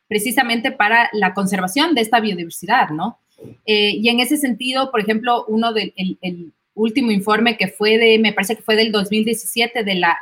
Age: 30-49